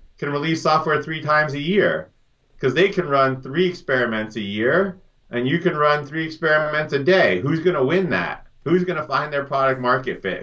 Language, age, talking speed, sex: English, 30-49, 195 wpm, male